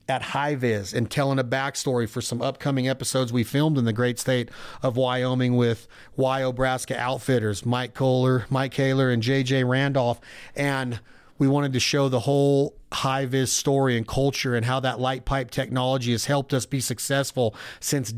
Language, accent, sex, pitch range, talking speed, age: English, American, male, 125-140 Hz, 170 wpm, 40-59